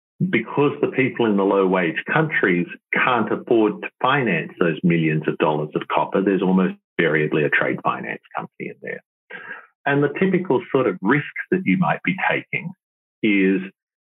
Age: 50-69